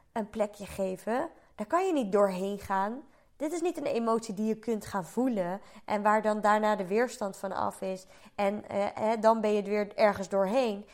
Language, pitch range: Dutch, 210-265 Hz